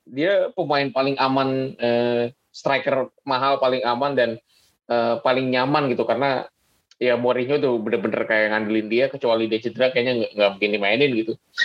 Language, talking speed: Indonesian, 155 wpm